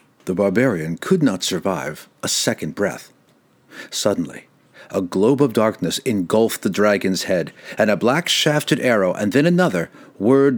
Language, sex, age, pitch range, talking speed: English, male, 50-69, 110-145 Hz, 145 wpm